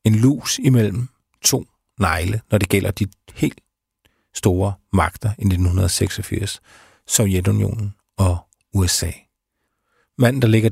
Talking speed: 110 wpm